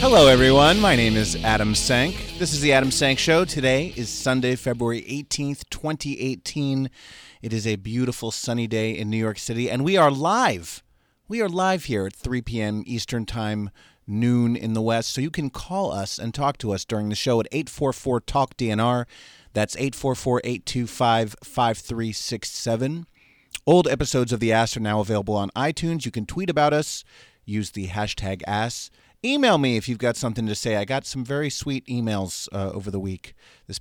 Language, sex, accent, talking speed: English, male, American, 175 wpm